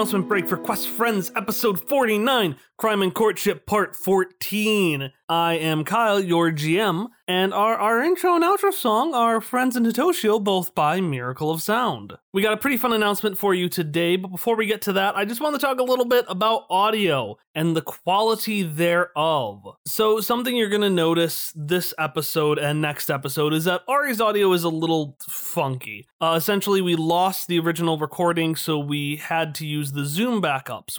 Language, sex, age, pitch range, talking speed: English, male, 30-49, 155-215 Hz, 185 wpm